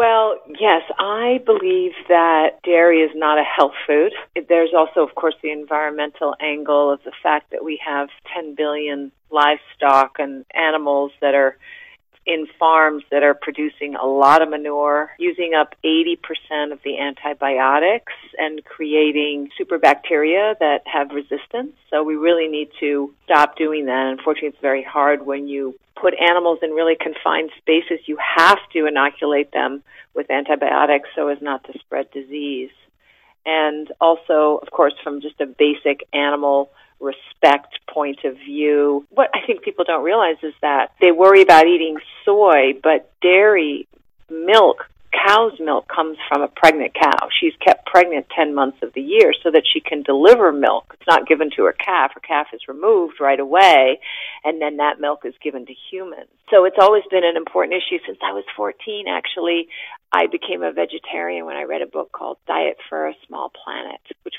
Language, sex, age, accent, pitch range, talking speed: English, female, 40-59, American, 145-175 Hz, 170 wpm